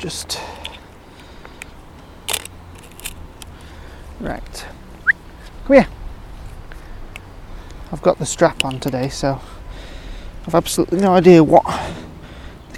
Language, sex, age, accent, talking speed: English, male, 30-49, British, 80 wpm